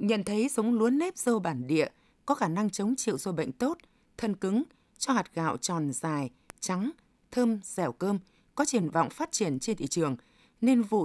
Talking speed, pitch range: 200 wpm, 175-235 Hz